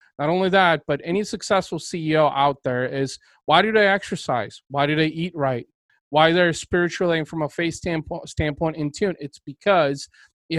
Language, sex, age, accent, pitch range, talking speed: English, male, 30-49, American, 145-185 Hz, 180 wpm